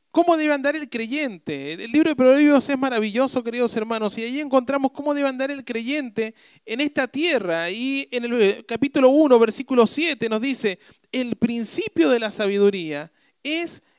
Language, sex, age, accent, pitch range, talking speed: Spanish, male, 40-59, Argentinian, 215-280 Hz, 165 wpm